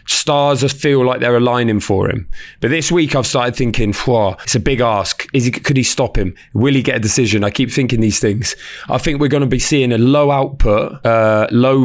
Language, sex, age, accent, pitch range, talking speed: English, male, 20-39, British, 115-140 Hz, 230 wpm